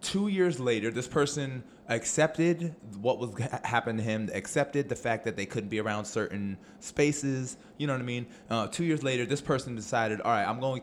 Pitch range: 110-140 Hz